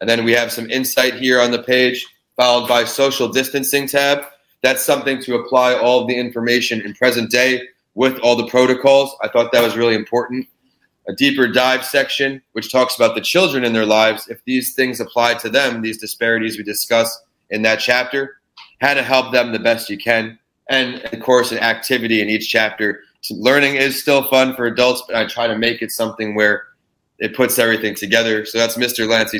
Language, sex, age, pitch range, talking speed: English, male, 30-49, 110-125 Hz, 200 wpm